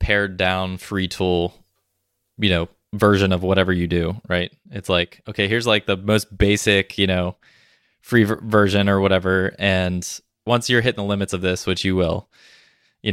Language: English